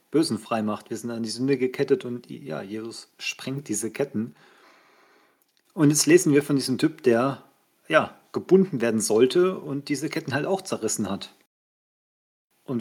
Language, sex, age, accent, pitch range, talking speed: German, male, 40-59, German, 120-140 Hz, 150 wpm